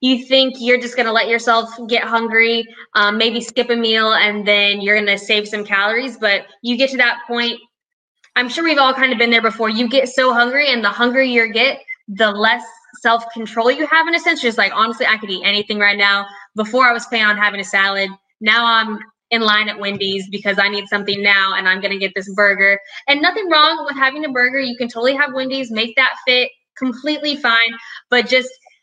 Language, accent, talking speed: English, American, 230 wpm